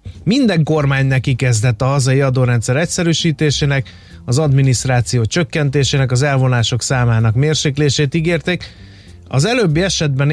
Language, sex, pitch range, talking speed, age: Hungarian, male, 120-155 Hz, 110 wpm, 30-49